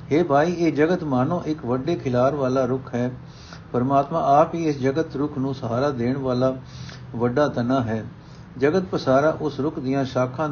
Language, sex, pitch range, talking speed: Punjabi, male, 130-160 Hz, 170 wpm